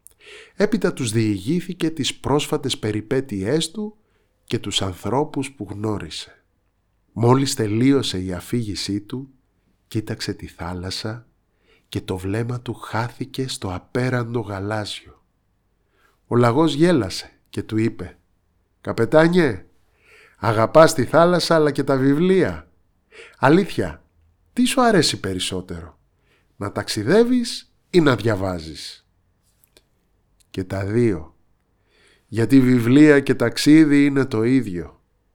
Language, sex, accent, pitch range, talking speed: Greek, male, native, 95-135 Hz, 105 wpm